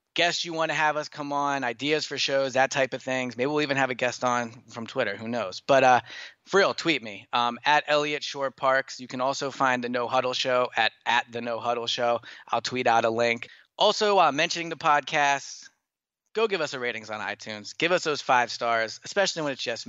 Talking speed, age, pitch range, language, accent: 230 wpm, 20-39, 120-150 Hz, English, American